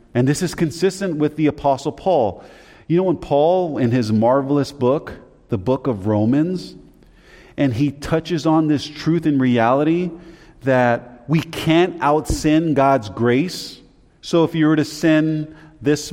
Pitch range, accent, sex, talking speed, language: 110-155 Hz, American, male, 155 wpm, English